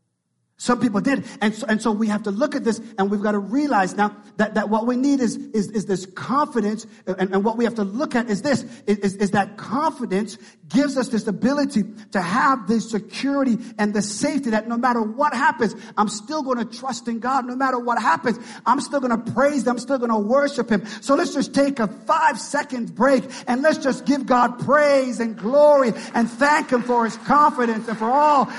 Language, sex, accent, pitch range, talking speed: English, male, American, 210-280 Hz, 225 wpm